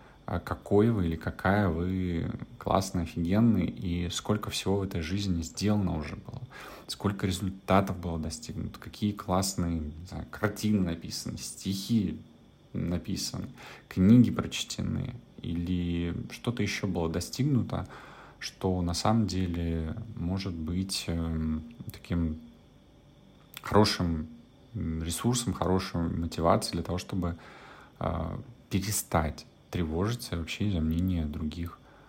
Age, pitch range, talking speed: 30-49, 85-105 Hz, 100 wpm